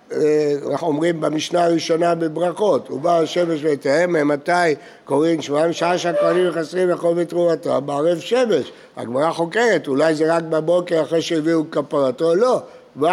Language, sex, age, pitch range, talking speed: Hebrew, male, 60-79, 160-200 Hz, 135 wpm